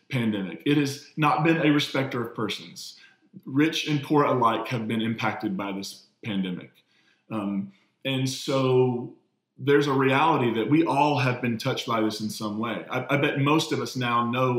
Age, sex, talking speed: 20-39, male, 180 wpm